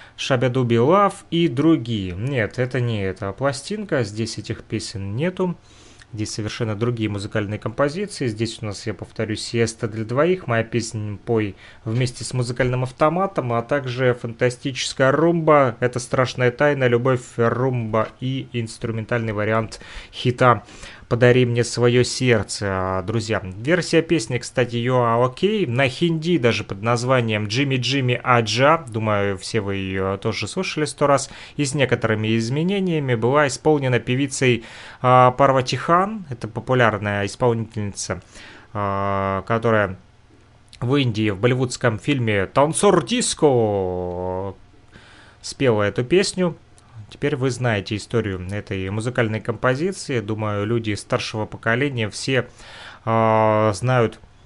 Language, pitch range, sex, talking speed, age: Russian, 110-130 Hz, male, 120 wpm, 30-49